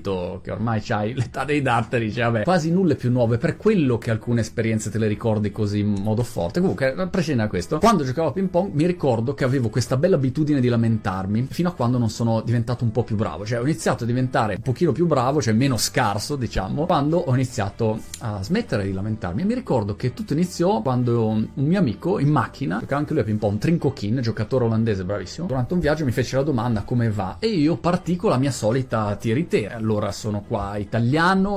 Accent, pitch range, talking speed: native, 110-140 Hz, 220 wpm